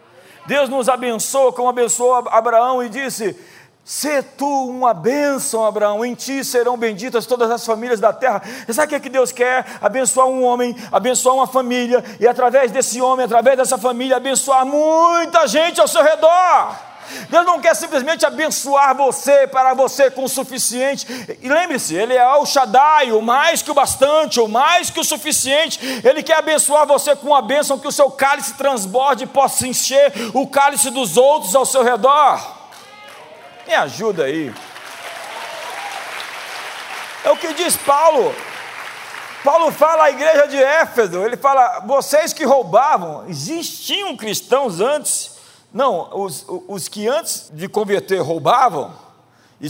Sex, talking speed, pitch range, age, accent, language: male, 155 wpm, 245-290 Hz, 40-59, Brazilian, Portuguese